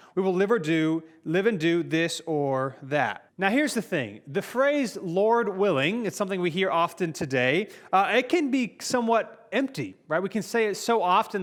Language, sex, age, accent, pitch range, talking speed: English, male, 30-49, American, 165-215 Hz, 200 wpm